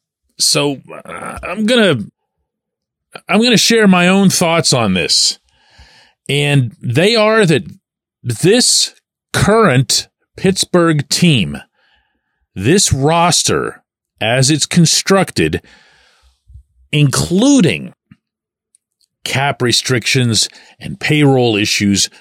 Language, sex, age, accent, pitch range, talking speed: English, male, 40-59, American, 110-170 Hz, 90 wpm